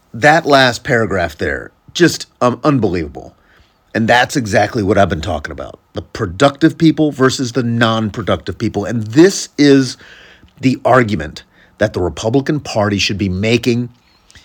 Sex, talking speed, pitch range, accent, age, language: male, 140 wpm, 110-145 Hz, American, 40-59, English